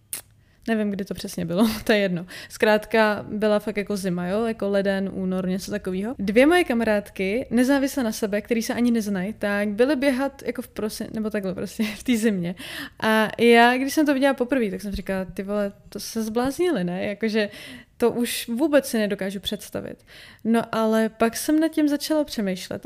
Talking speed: 190 wpm